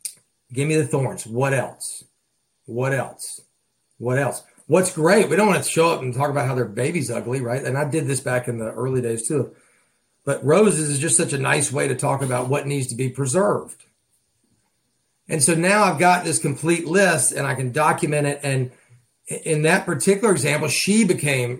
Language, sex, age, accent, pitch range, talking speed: English, male, 40-59, American, 125-170 Hz, 200 wpm